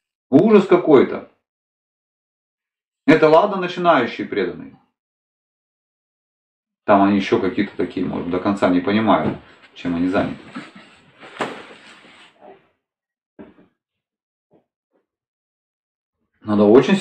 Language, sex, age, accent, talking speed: Russian, male, 40-59, native, 75 wpm